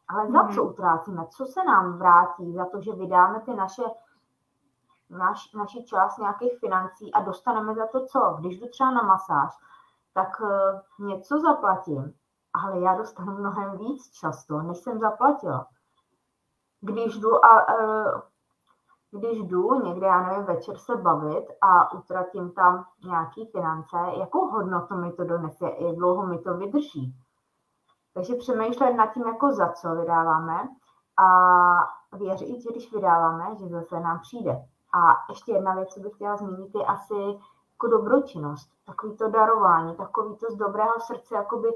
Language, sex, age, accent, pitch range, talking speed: Czech, female, 20-39, native, 180-240 Hz, 150 wpm